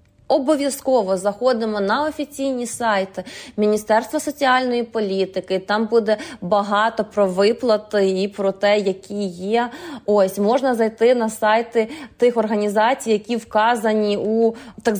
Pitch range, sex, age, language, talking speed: 205-250 Hz, female, 20-39, Ukrainian, 115 wpm